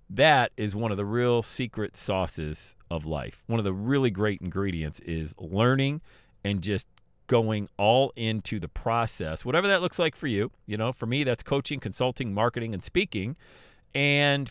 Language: English